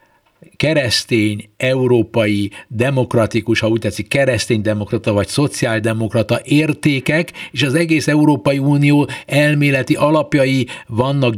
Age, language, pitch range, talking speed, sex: 60-79, Hungarian, 120-170 Hz, 100 wpm, male